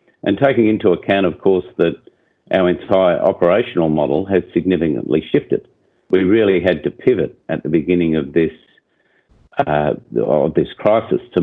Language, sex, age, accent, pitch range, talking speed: English, male, 50-69, Australian, 85-95 Hz, 145 wpm